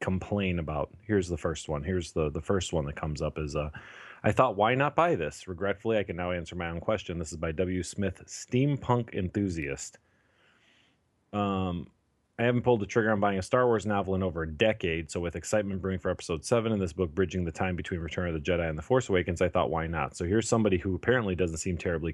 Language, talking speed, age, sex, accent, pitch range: English, 240 wpm, 30-49, male, American, 85-105 Hz